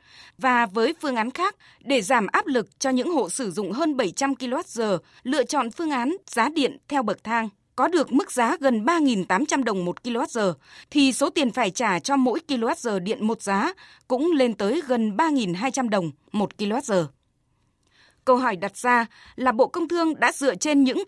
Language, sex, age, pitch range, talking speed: Vietnamese, female, 20-39, 210-290 Hz, 190 wpm